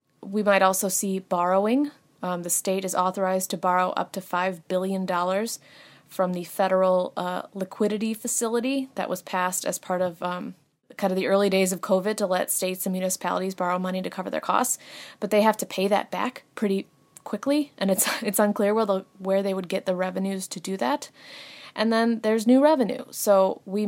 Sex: female